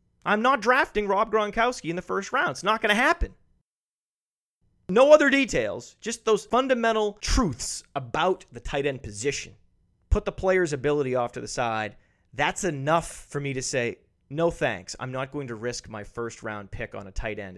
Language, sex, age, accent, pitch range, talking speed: English, male, 30-49, American, 120-180 Hz, 190 wpm